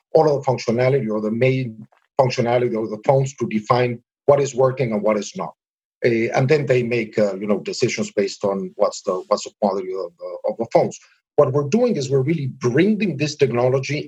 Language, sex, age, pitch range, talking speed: English, male, 50-69, 120-170 Hz, 210 wpm